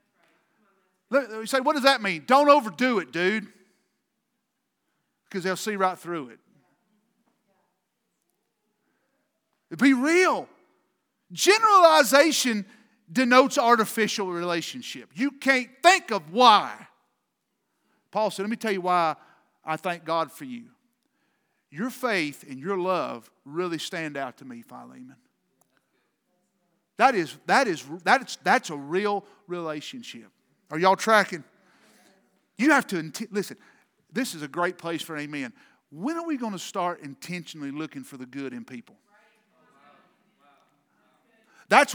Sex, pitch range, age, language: male, 165-240 Hz, 40-59, English